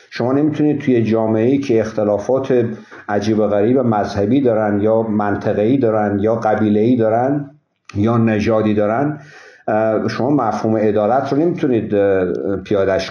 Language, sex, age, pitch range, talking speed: Persian, male, 50-69, 105-135 Hz, 125 wpm